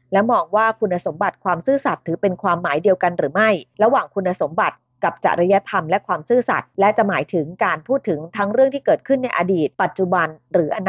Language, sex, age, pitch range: Thai, female, 30-49, 180-235 Hz